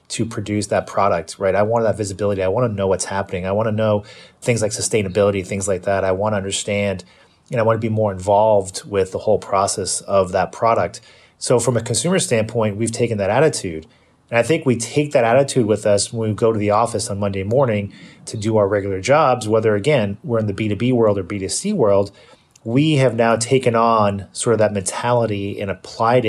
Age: 30-49